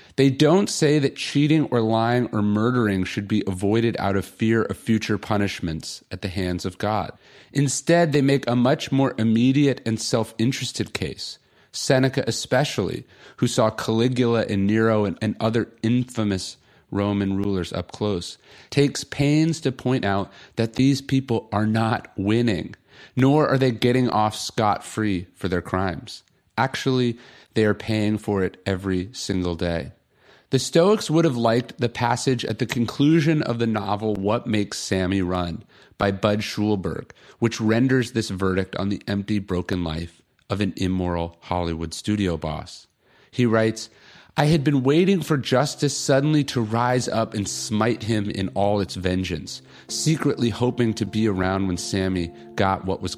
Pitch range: 100-130 Hz